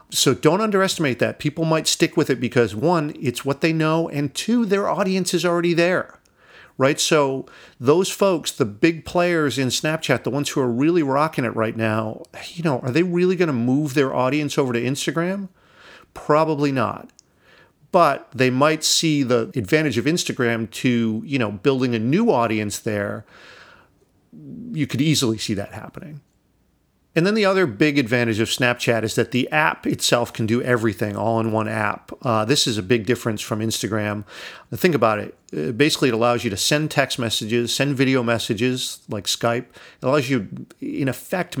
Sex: male